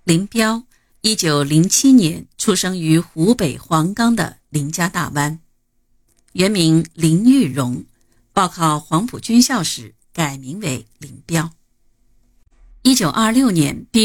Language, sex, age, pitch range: Chinese, female, 50-69, 130-200 Hz